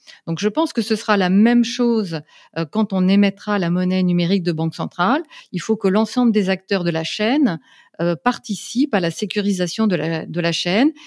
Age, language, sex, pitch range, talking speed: 40-59, French, female, 175-225 Hz, 195 wpm